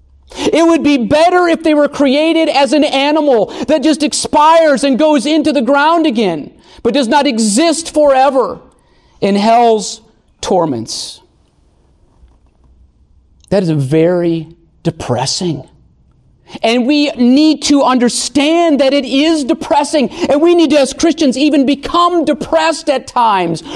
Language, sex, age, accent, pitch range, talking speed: English, male, 40-59, American, 200-295 Hz, 130 wpm